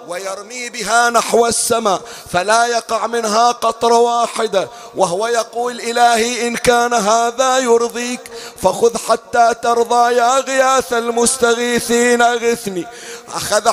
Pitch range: 230-240 Hz